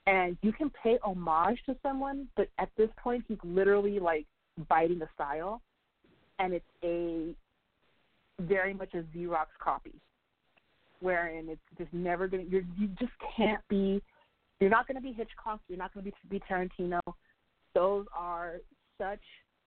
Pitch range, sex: 165-200 Hz, female